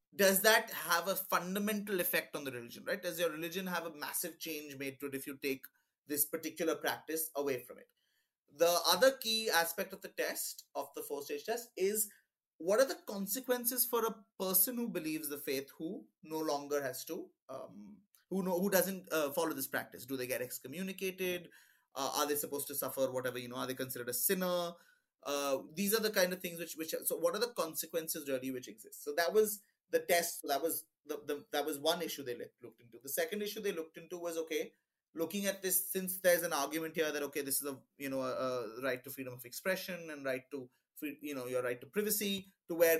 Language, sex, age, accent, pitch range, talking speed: English, male, 20-39, Indian, 145-195 Hz, 220 wpm